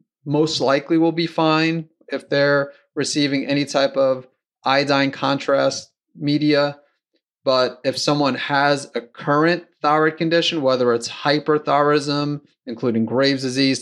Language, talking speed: English, 120 wpm